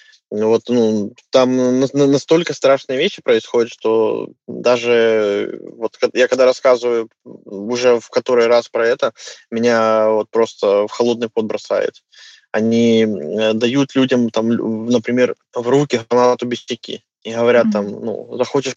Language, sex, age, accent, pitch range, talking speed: Russian, male, 20-39, native, 115-135 Hz, 125 wpm